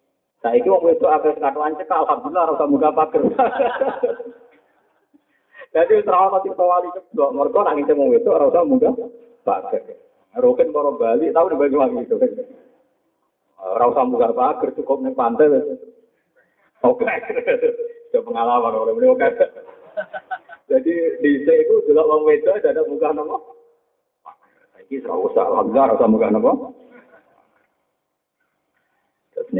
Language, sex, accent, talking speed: Indonesian, male, native, 95 wpm